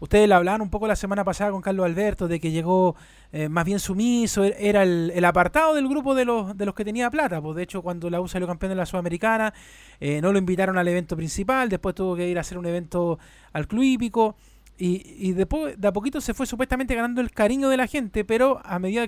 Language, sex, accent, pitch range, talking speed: Spanish, male, Argentinian, 175-225 Hz, 250 wpm